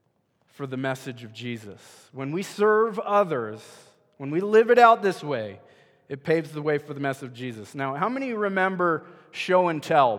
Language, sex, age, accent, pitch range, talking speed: English, male, 20-39, American, 150-210 Hz, 175 wpm